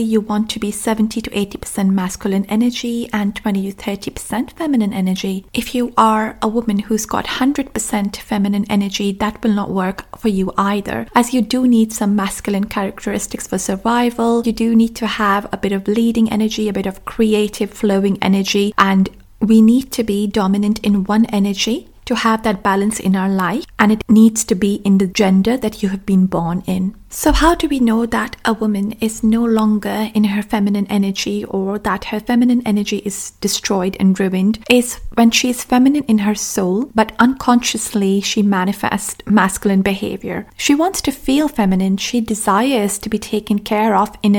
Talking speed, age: 185 wpm, 30-49